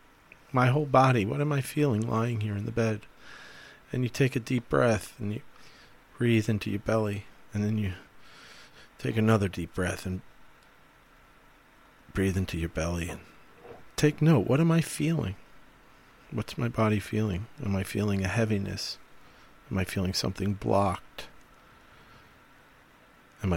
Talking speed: 150 wpm